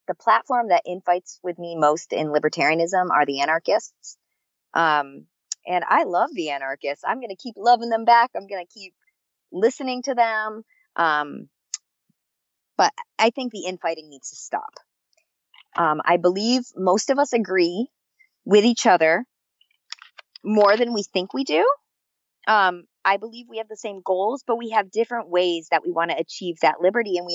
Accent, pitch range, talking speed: American, 165-225 Hz, 175 wpm